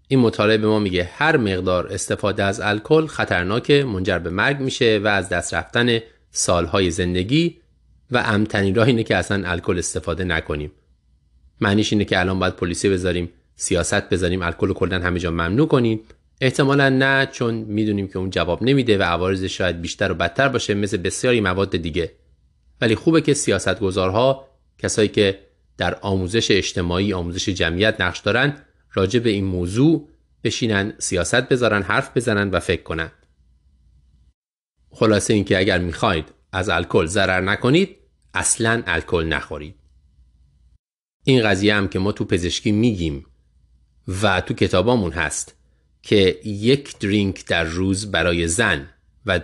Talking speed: 145 wpm